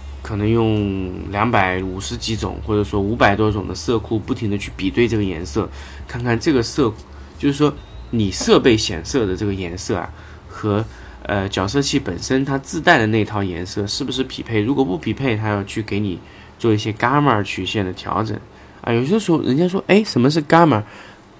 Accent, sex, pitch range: native, male, 95-120 Hz